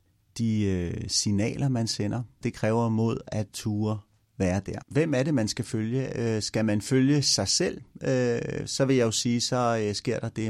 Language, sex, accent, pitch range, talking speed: Danish, male, native, 100-120 Hz, 175 wpm